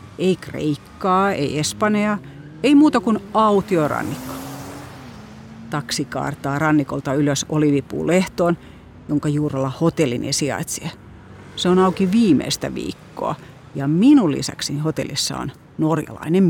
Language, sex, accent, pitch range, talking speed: Finnish, female, native, 145-195 Hz, 100 wpm